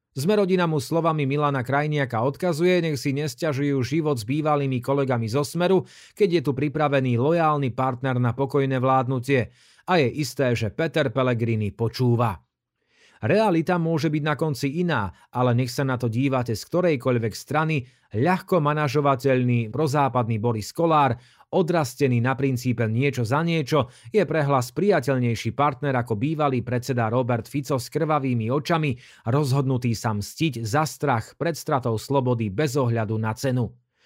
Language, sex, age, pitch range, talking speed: Slovak, male, 30-49, 125-155 Hz, 145 wpm